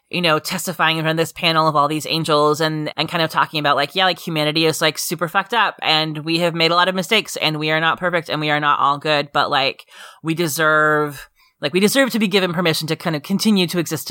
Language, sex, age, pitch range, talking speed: English, female, 20-39, 155-185 Hz, 270 wpm